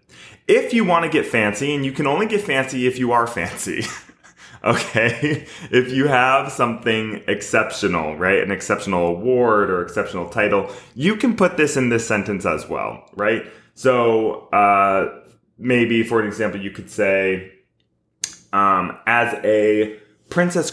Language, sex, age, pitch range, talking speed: English, male, 20-39, 95-130 Hz, 150 wpm